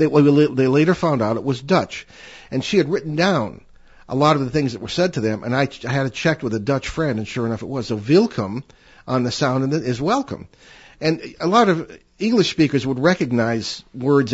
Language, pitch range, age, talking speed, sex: English, 120-155 Hz, 50-69, 245 wpm, male